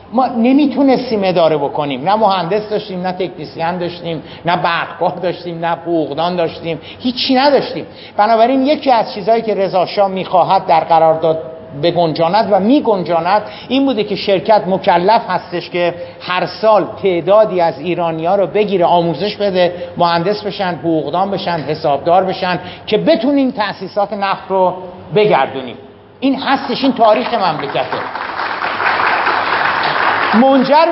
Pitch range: 175-230 Hz